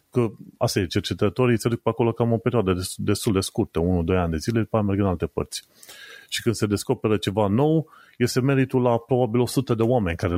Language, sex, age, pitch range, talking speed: Romanian, male, 30-49, 95-115 Hz, 225 wpm